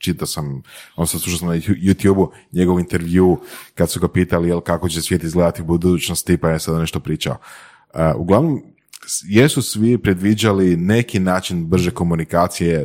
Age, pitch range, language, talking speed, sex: 30-49, 85-105 Hz, Croatian, 155 wpm, male